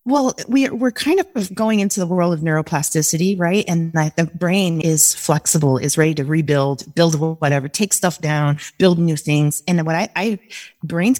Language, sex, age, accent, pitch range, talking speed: English, female, 30-49, American, 160-195 Hz, 195 wpm